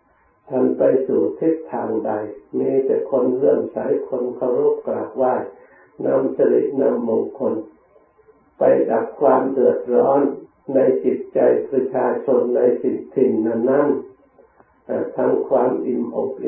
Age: 60-79